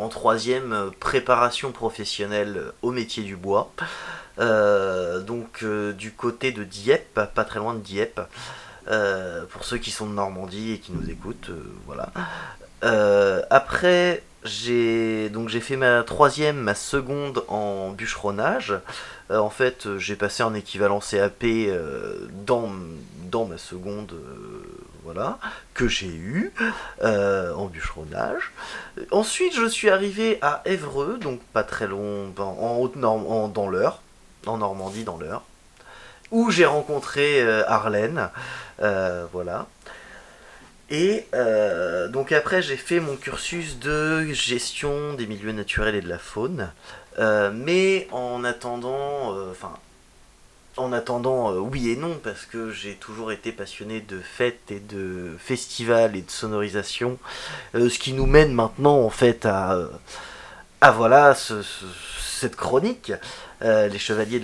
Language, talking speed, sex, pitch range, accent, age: French, 140 wpm, male, 105-135 Hz, French, 30-49